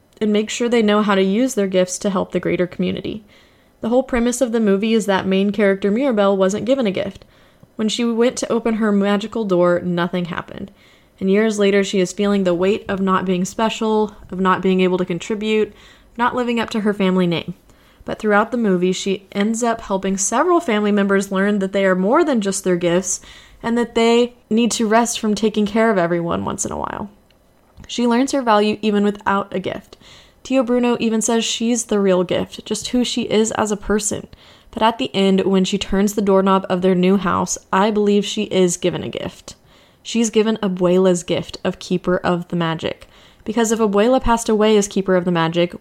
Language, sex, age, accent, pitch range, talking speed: English, female, 20-39, American, 185-225 Hz, 210 wpm